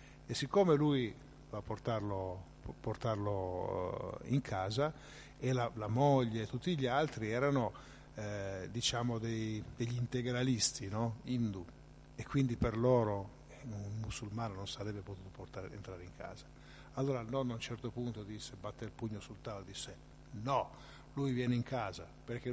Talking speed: 155 wpm